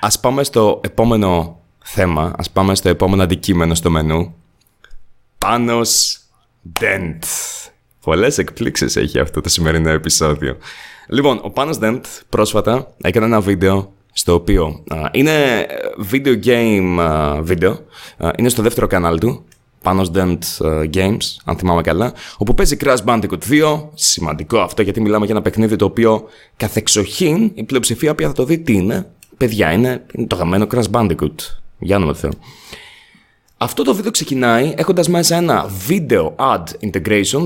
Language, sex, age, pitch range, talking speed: Greek, male, 20-39, 95-120 Hz, 145 wpm